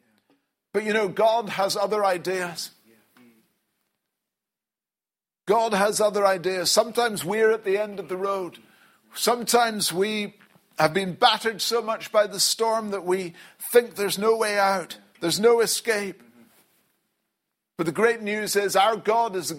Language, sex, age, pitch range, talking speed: English, male, 50-69, 185-220 Hz, 145 wpm